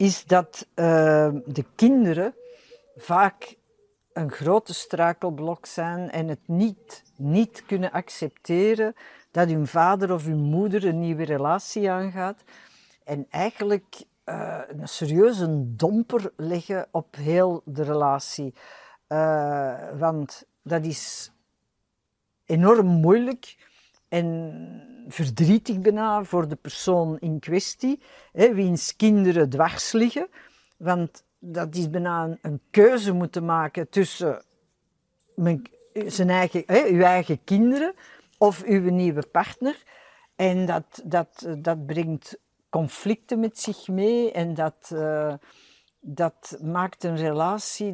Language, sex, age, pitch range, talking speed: Dutch, female, 60-79, 160-210 Hz, 115 wpm